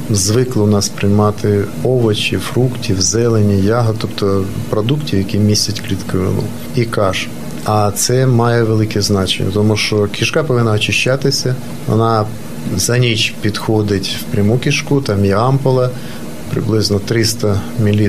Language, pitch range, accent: Ukrainian, 105-130 Hz, native